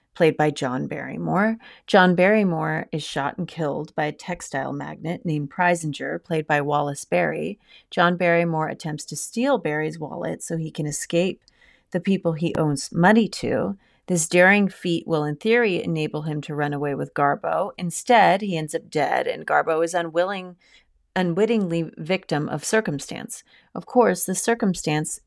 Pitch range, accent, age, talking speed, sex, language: 155-185 Hz, American, 30-49, 160 wpm, female, English